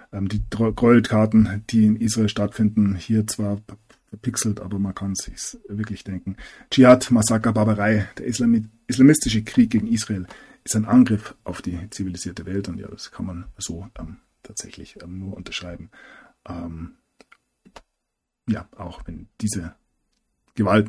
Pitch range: 95-110 Hz